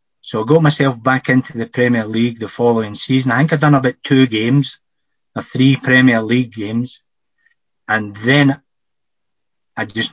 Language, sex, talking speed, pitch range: English, male, 165 wpm, 110-130 Hz